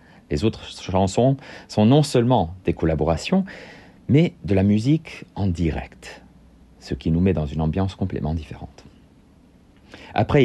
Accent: French